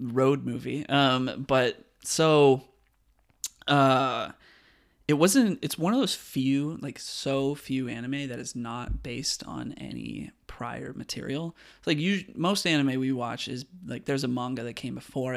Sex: male